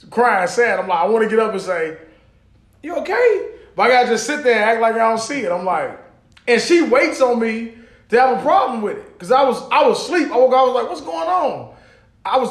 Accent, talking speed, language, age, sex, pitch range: American, 260 wpm, English, 20-39, male, 175-240 Hz